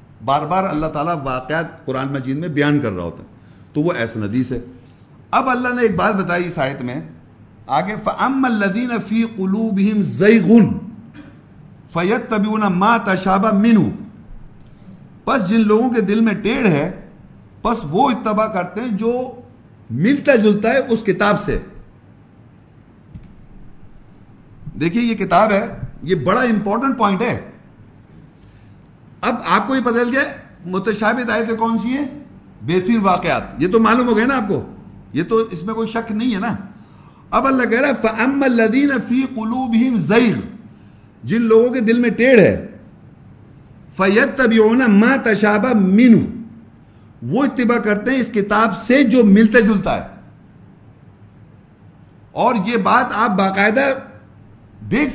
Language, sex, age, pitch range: English, male, 50-69, 175-235 Hz